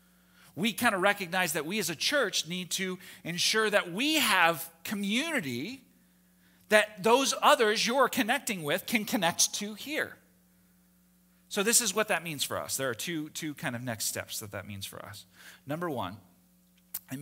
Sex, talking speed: male, 175 wpm